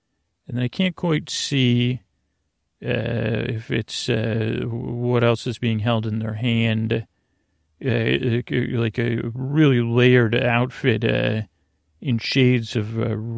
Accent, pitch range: American, 110-120 Hz